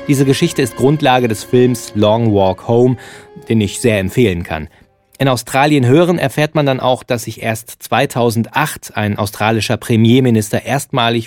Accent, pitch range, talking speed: German, 105-130 Hz, 155 wpm